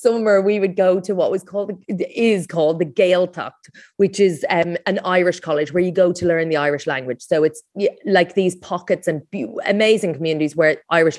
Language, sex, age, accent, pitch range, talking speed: English, female, 30-49, Irish, 170-210 Hz, 205 wpm